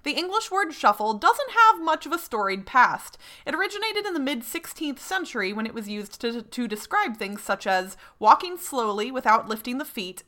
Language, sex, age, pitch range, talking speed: English, female, 30-49, 215-325 Hz, 195 wpm